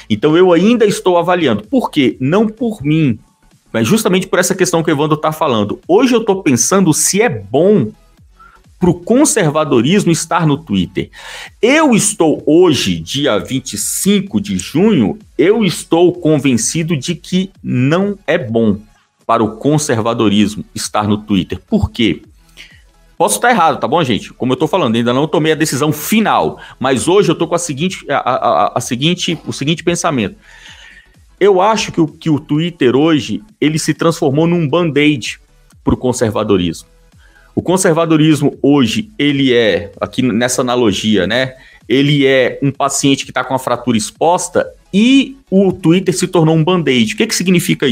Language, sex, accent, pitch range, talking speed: Portuguese, male, Brazilian, 130-185 Hz, 165 wpm